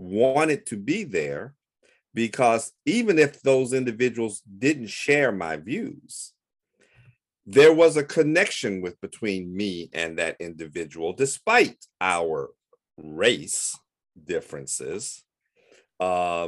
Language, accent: English, American